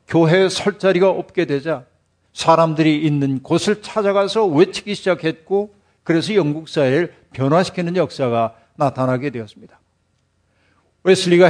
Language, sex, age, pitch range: Korean, male, 50-69, 145-190 Hz